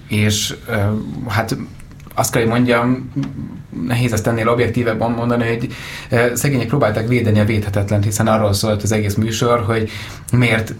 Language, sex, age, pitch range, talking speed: Hungarian, male, 30-49, 105-120 Hz, 135 wpm